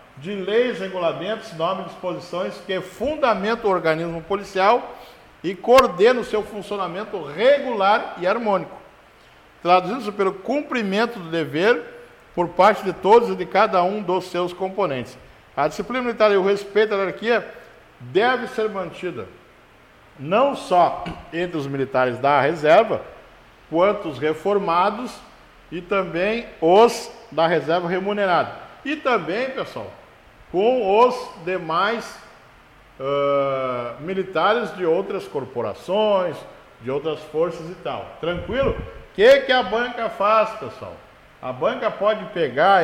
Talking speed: 125 wpm